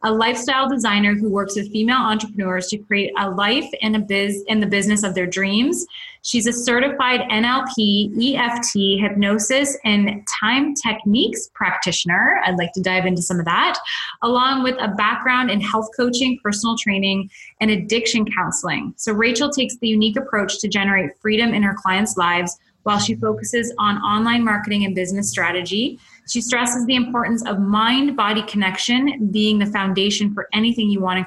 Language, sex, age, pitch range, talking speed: English, female, 20-39, 195-235 Hz, 170 wpm